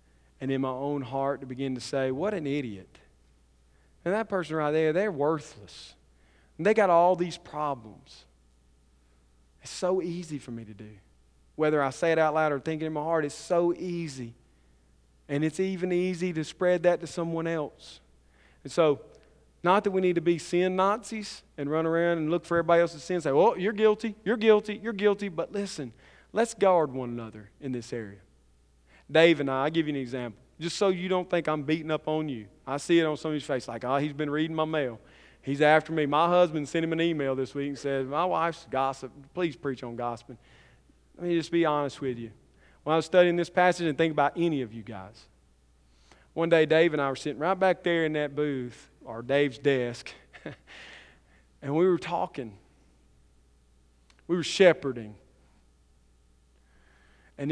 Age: 40-59